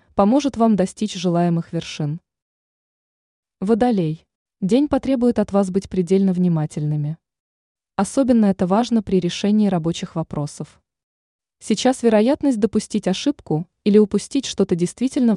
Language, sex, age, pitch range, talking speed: Russian, female, 20-39, 175-225 Hz, 110 wpm